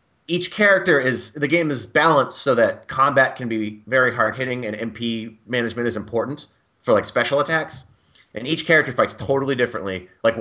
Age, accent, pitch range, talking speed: 30-49, American, 110-135 Hz, 180 wpm